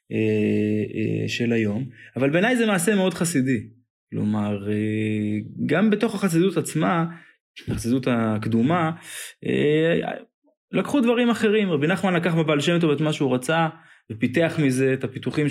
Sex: male